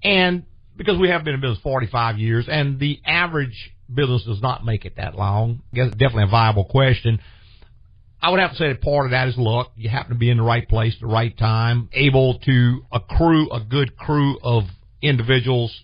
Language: English